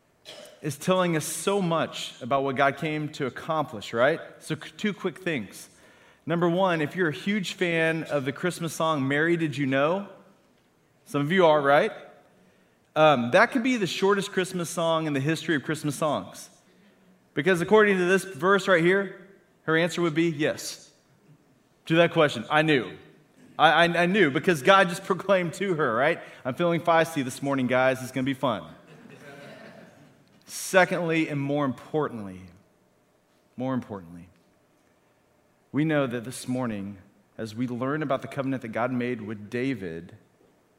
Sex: male